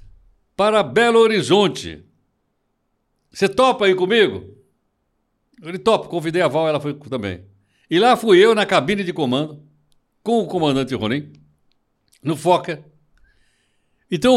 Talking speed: 125 wpm